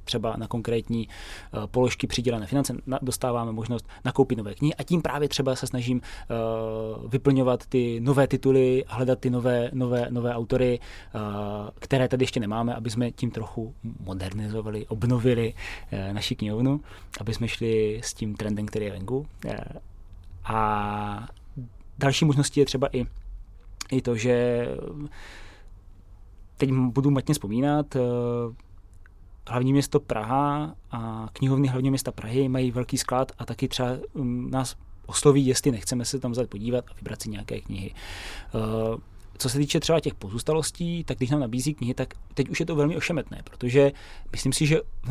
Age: 20-39